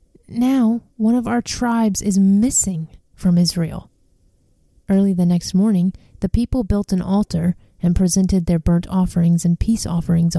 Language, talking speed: English, 150 wpm